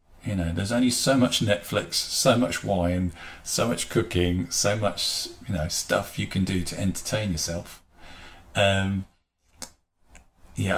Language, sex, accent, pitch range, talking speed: English, male, British, 85-100 Hz, 145 wpm